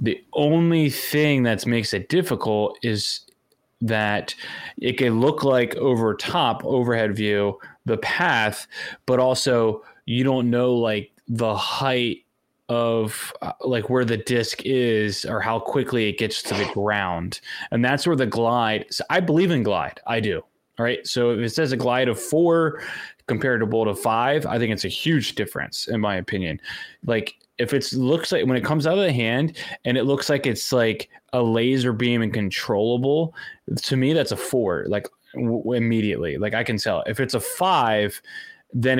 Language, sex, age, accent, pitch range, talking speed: English, male, 20-39, American, 110-130 Hz, 180 wpm